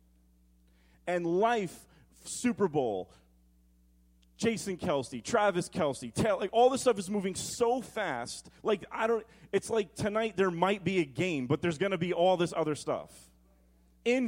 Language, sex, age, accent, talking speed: English, male, 30-49, American, 160 wpm